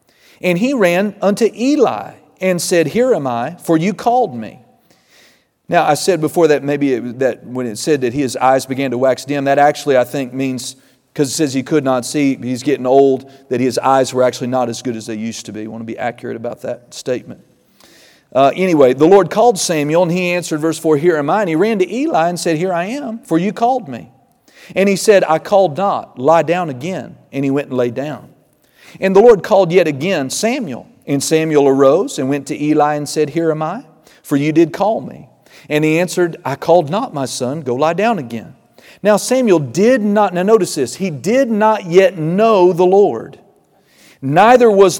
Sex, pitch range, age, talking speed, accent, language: male, 140-200 Hz, 40-59, 220 wpm, American, English